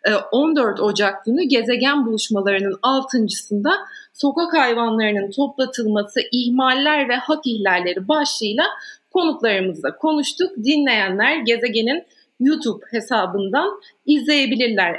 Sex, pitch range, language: female, 210-285 Hz, Turkish